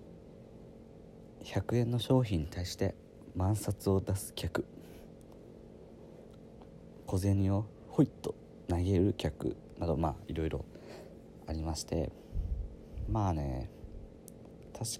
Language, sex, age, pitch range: Japanese, male, 50-69, 80-105 Hz